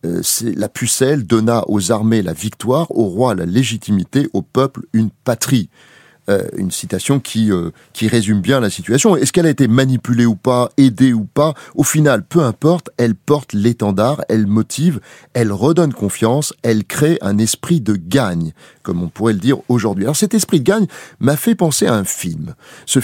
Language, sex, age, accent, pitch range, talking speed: French, male, 30-49, French, 110-155 Hz, 195 wpm